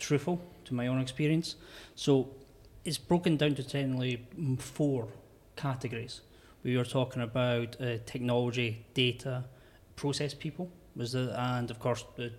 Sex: male